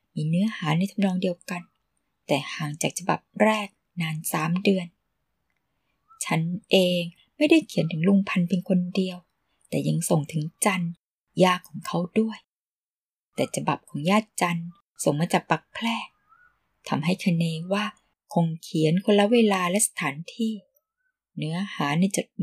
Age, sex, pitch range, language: 10-29, female, 170-210 Hz, Thai